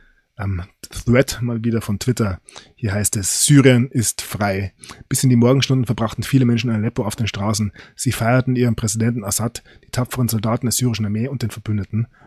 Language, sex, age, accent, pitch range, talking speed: German, male, 20-39, German, 105-130 Hz, 180 wpm